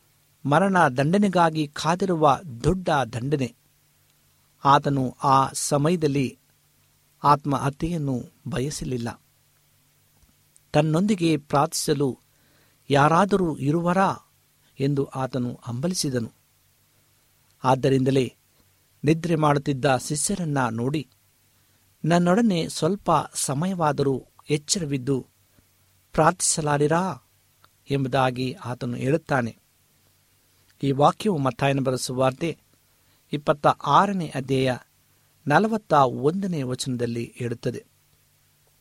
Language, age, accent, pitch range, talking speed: Kannada, 60-79, native, 125-165 Hz, 65 wpm